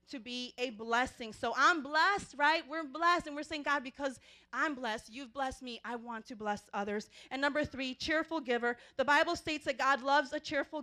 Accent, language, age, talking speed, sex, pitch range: American, English, 30-49, 210 wpm, female, 245-305 Hz